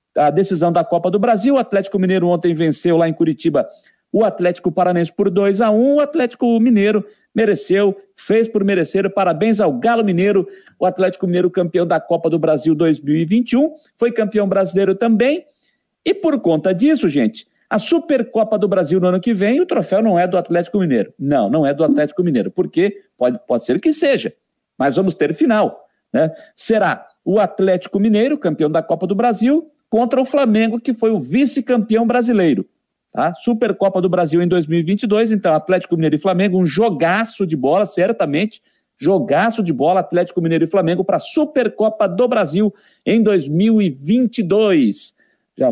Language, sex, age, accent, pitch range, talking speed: Portuguese, male, 50-69, Brazilian, 175-235 Hz, 170 wpm